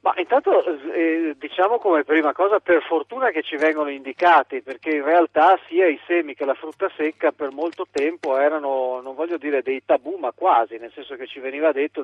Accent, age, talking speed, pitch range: native, 40-59, 200 wpm, 130-170 Hz